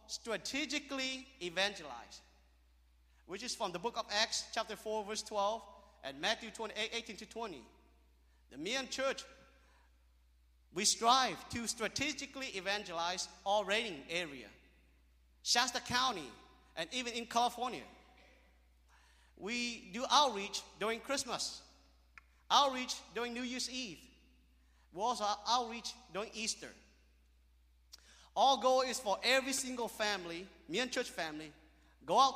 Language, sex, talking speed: English, male, 115 wpm